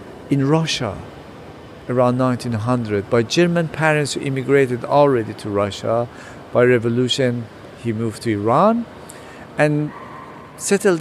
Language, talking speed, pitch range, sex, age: English, 110 wpm, 120-165 Hz, male, 50-69